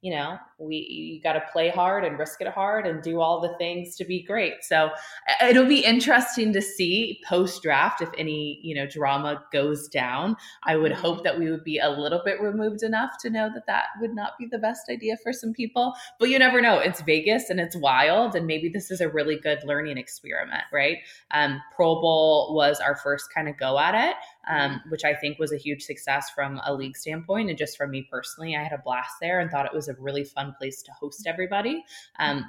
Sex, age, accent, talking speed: female, 20-39, American, 225 wpm